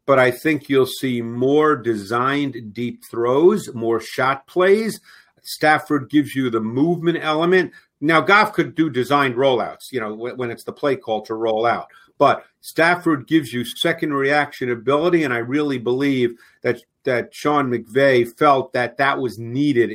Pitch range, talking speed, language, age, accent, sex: 115-150 Hz, 160 wpm, English, 50-69, American, male